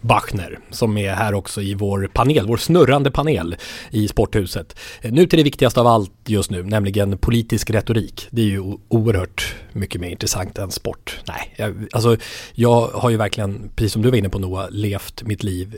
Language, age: English, 30-49